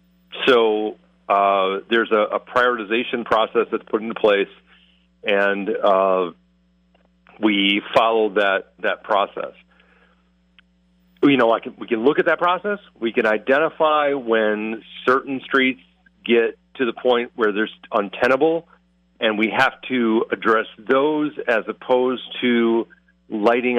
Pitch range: 95-120 Hz